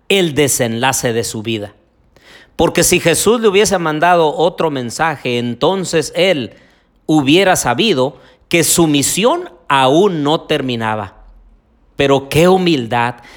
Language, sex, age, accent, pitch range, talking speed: Spanish, male, 50-69, Mexican, 130-190 Hz, 115 wpm